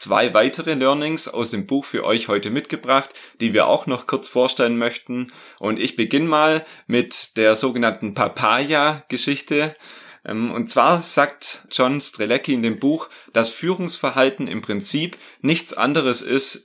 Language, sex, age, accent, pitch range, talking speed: German, male, 30-49, German, 115-150 Hz, 145 wpm